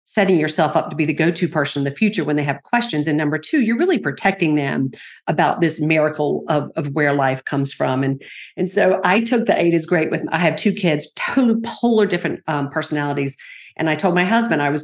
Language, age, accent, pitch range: English, 50-69, American, 155-200 Hz